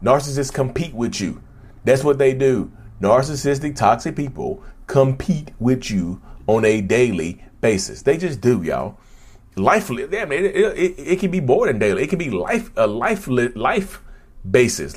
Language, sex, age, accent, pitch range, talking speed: English, male, 30-49, American, 95-145 Hz, 155 wpm